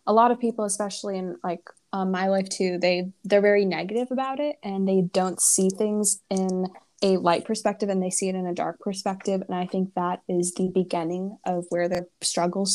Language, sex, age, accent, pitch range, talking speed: English, female, 20-39, American, 185-205 Hz, 205 wpm